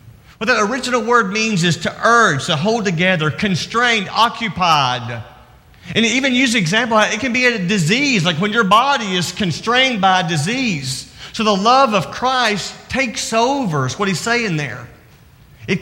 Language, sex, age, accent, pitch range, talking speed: English, male, 40-59, American, 145-215 Hz, 165 wpm